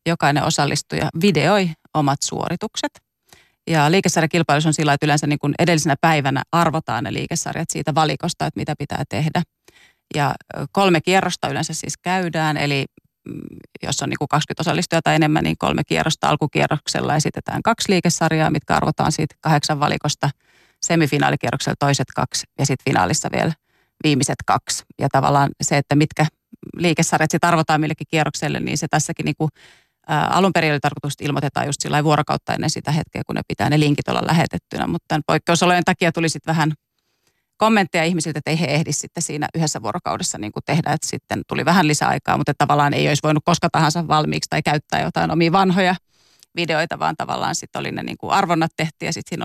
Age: 30-49